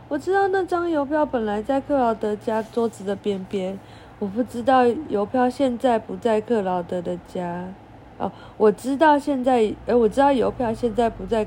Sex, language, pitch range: female, Chinese, 200-270 Hz